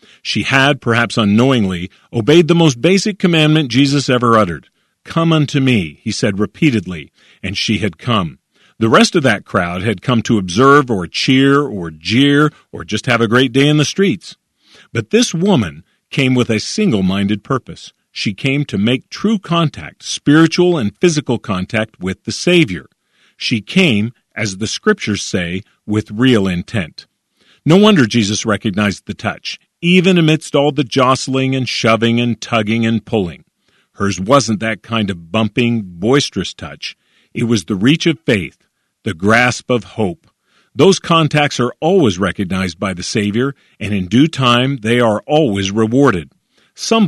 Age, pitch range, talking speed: 40-59, 105-145 Hz, 160 wpm